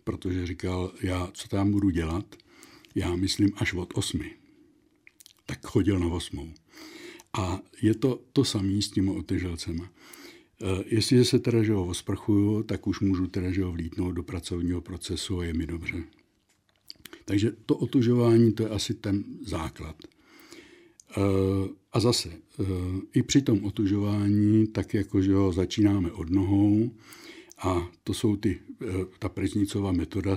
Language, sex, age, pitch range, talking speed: Czech, male, 60-79, 95-115 Hz, 140 wpm